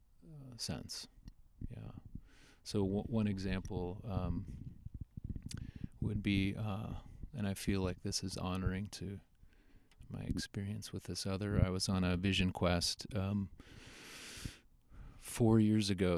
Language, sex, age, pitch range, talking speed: English, male, 30-49, 85-105 Hz, 120 wpm